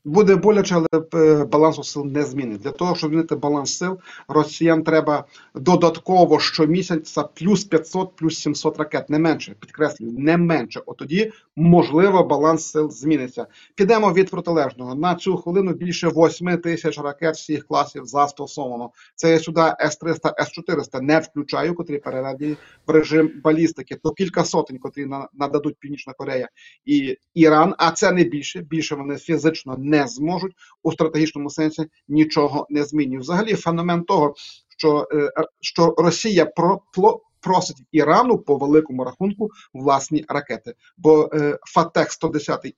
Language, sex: Ukrainian, male